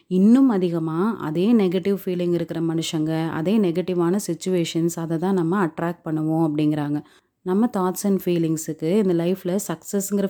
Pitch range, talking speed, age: 170-195 Hz, 135 wpm, 30-49